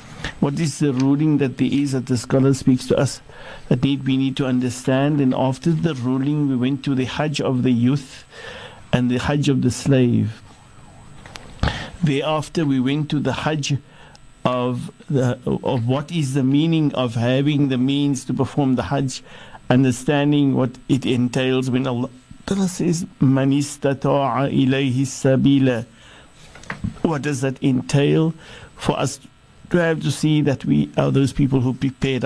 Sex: male